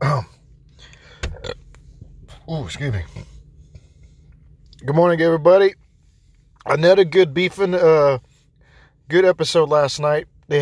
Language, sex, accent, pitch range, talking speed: English, male, American, 140-165 Hz, 90 wpm